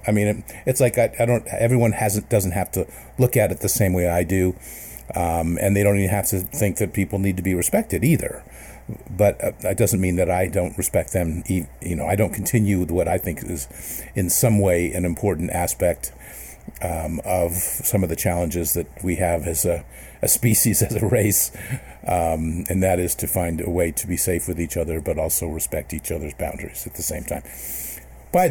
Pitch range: 85-110 Hz